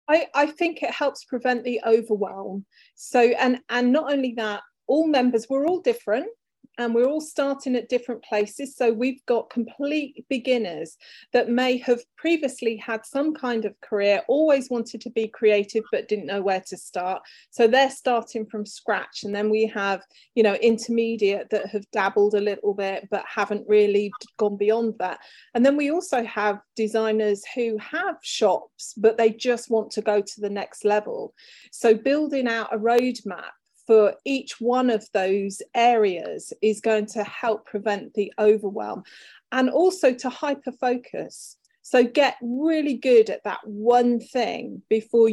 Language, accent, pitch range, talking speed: English, British, 210-255 Hz, 165 wpm